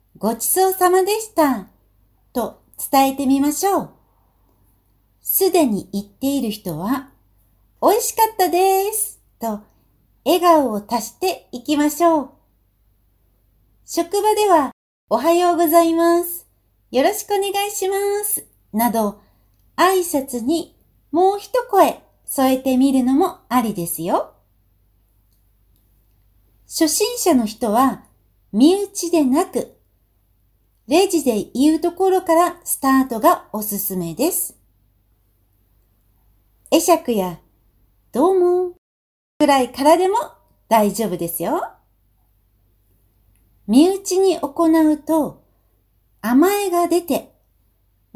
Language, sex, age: Japanese, female, 60-79